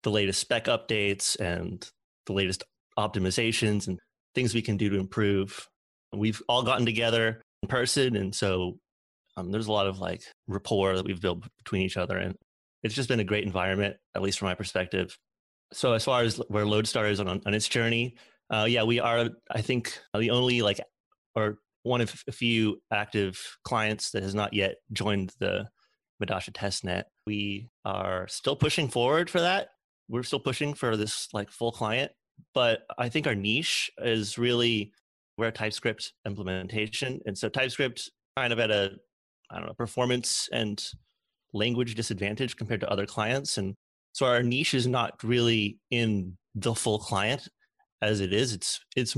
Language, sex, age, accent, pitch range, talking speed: English, male, 30-49, American, 100-120 Hz, 175 wpm